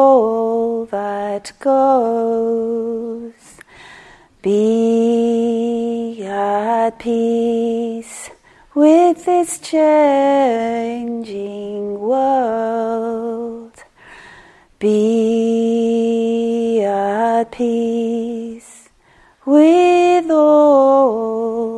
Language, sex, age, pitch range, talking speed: English, female, 30-49, 225-240 Hz, 40 wpm